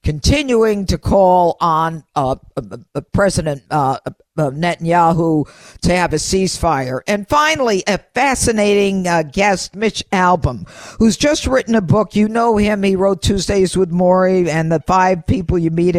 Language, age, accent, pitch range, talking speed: English, 50-69, American, 165-205 Hz, 160 wpm